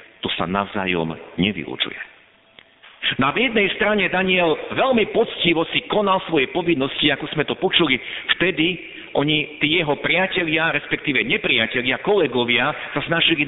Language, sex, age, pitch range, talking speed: Slovak, male, 50-69, 140-215 Hz, 125 wpm